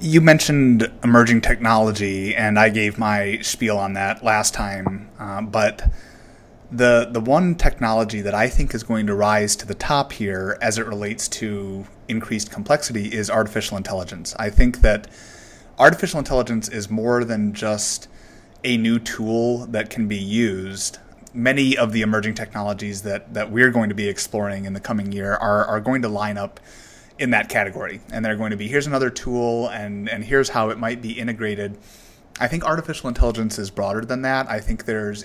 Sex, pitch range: male, 105-120 Hz